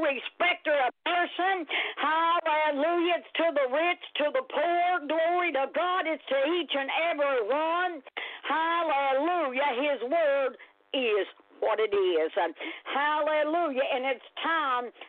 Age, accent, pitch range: 60-79, American, 270-335 Hz